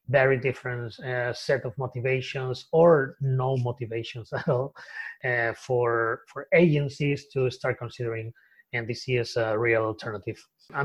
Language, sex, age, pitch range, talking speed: English, male, 30-49, 125-150 Hz, 135 wpm